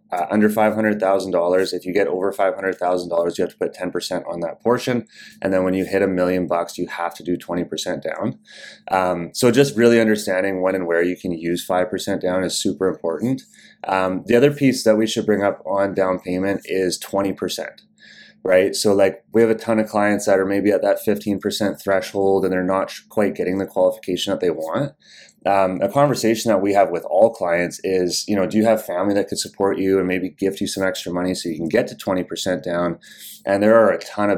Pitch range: 90-105 Hz